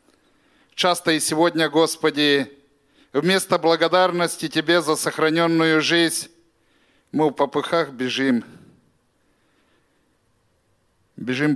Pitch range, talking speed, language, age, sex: 125-165 Hz, 80 wpm, Russian, 50-69, male